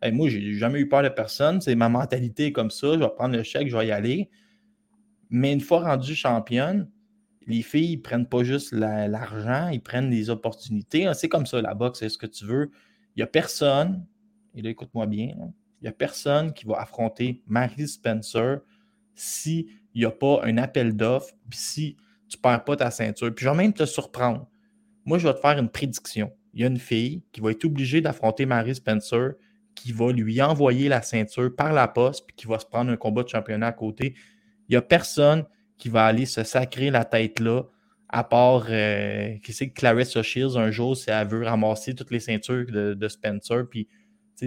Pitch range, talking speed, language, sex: 115-150 Hz, 220 wpm, French, male